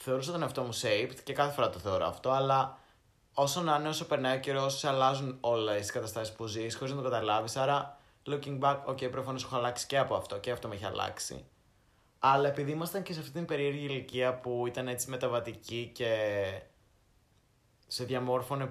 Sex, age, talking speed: male, 20-39, 190 wpm